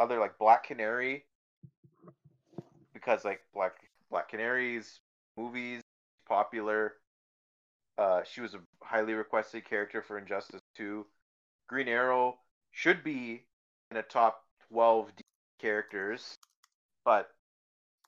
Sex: male